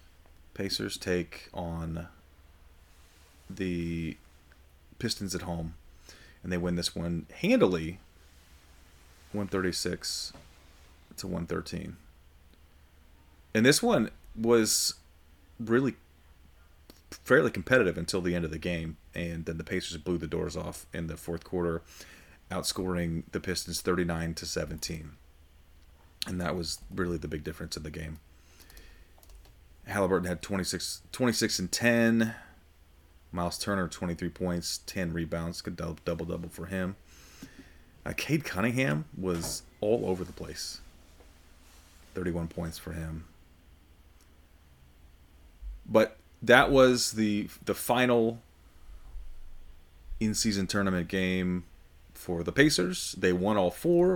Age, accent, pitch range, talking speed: 30-49, American, 75-90 Hz, 115 wpm